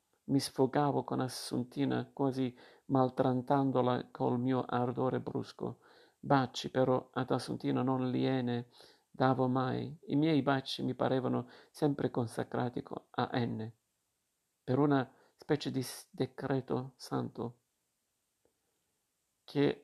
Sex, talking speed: male, 105 wpm